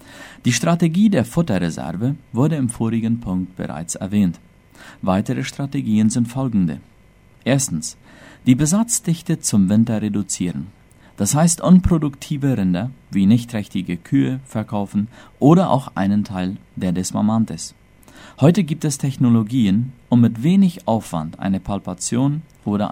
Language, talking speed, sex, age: Spanish, 120 wpm, male, 50-69